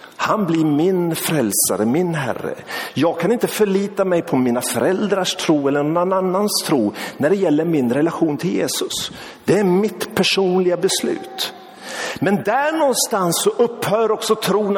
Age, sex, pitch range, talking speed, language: 50-69, male, 165-225 Hz, 155 wpm, Swedish